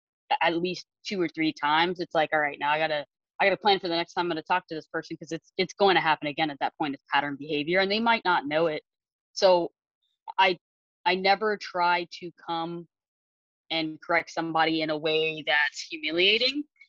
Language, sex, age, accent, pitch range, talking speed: English, female, 20-39, American, 155-185 Hz, 215 wpm